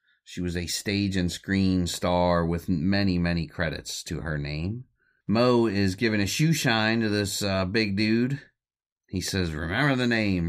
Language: English